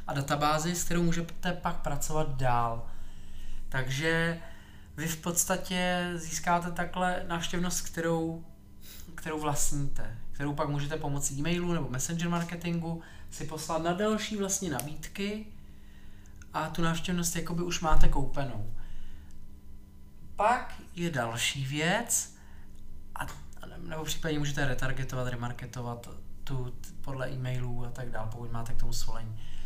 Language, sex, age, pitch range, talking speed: Czech, male, 20-39, 120-175 Hz, 120 wpm